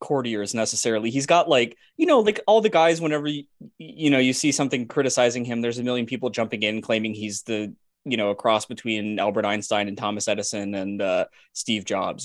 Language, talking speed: English, 210 wpm